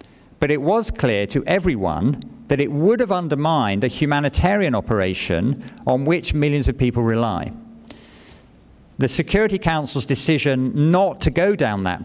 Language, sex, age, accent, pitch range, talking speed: English, male, 50-69, British, 115-150 Hz, 145 wpm